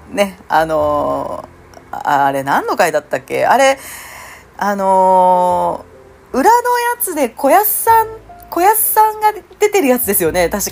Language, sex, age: Japanese, female, 40-59